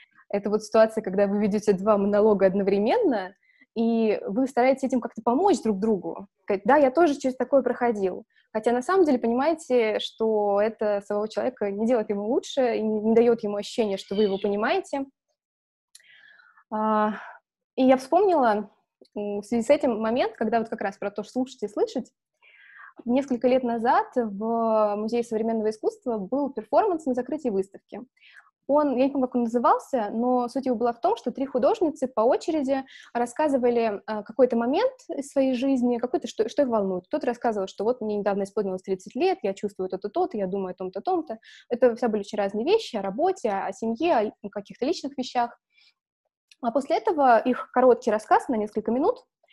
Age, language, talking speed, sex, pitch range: 20-39, Russian, 175 wpm, female, 210-270 Hz